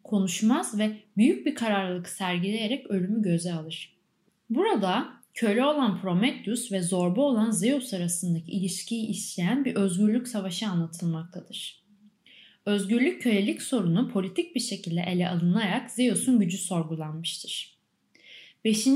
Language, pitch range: Turkish, 180-245 Hz